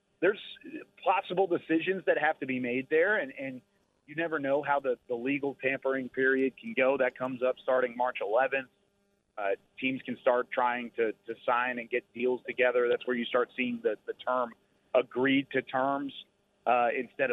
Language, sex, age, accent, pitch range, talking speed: English, male, 40-59, American, 125-155 Hz, 185 wpm